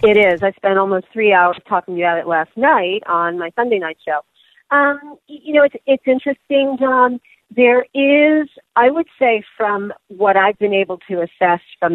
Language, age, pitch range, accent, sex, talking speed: English, 40-59, 170-230 Hz, American, female, 185 wpm